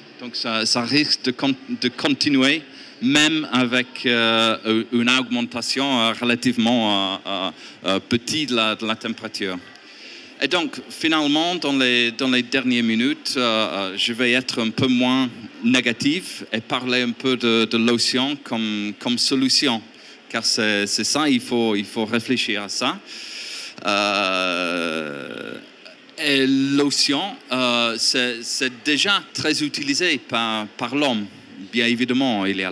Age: 40-59